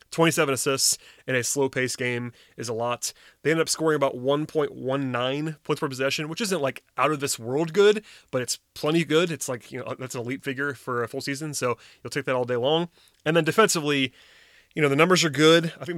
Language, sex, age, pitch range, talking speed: English, male, 30-49, 125-150 Hz, 225 wpm